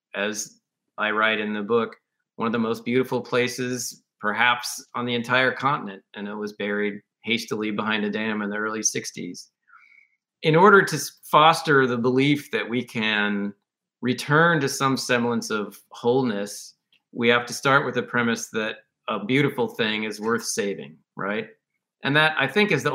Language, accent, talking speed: English, American, 170 wpm